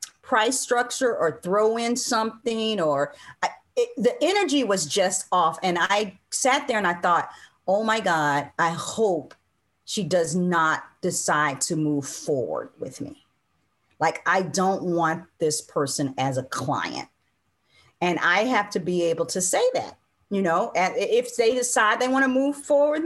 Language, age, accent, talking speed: English, 40-59, American, 160 wpm